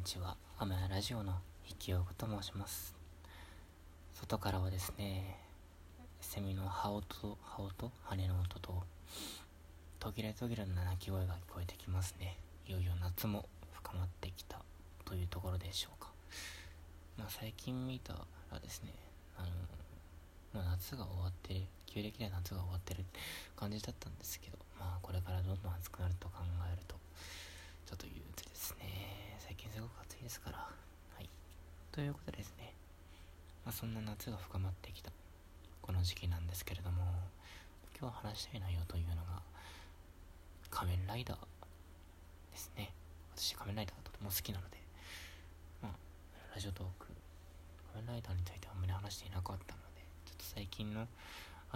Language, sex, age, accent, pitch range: Japanese, male, 20-39, native, 80-95 Hz